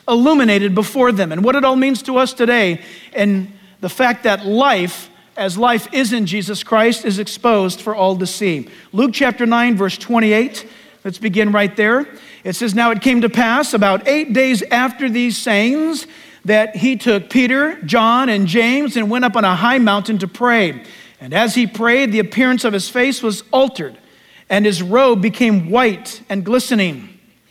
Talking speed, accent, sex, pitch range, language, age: 185 wpm, American, male, 210-265 Hz, English, 50-69